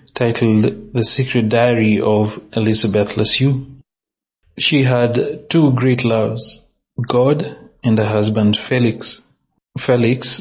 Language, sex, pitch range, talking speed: English, male, 110-130 Hz, 105 wpm